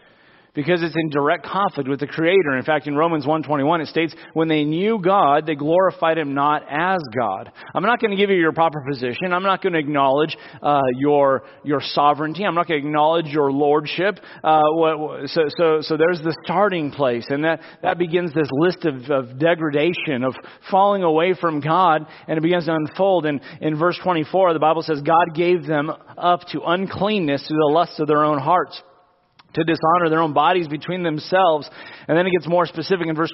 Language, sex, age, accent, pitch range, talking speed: English, male, 30-49, American, 150-175 Hz, 205 wpm